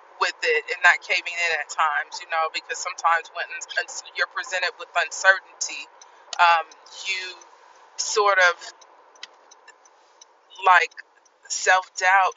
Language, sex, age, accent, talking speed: English, female, 30-49, American, 110 wpm